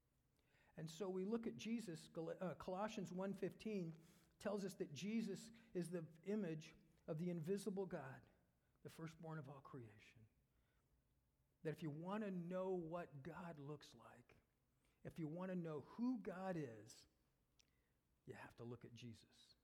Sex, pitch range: male, 115-170 Hz